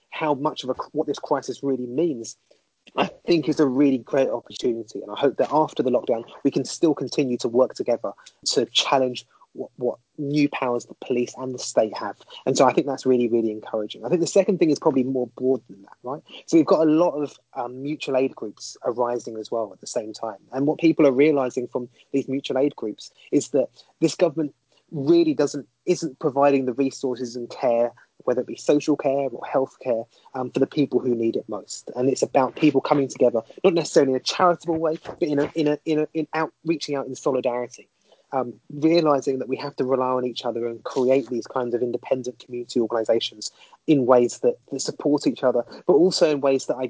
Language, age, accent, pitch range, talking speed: English, 20-39, British, 120-145 Hz, 220 wpm